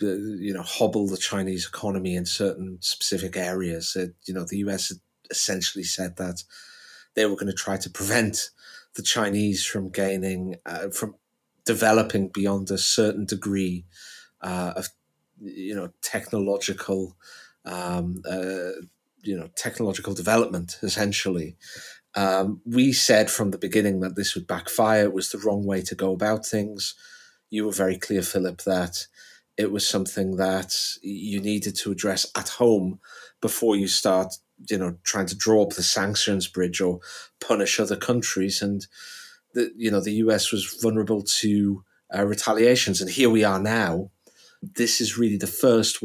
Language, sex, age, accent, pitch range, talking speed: English, male, 30-49, British, 95-105 Hz, 160 wpm